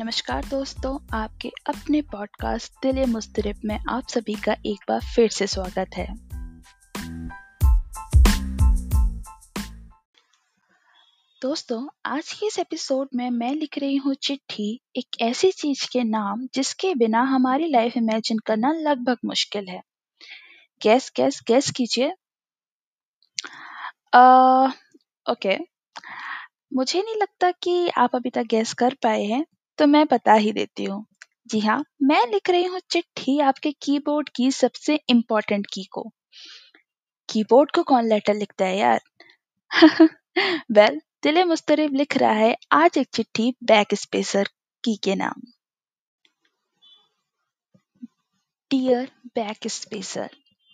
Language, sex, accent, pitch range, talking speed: Hindi, female, native, 215-290 Hz, 120 wpm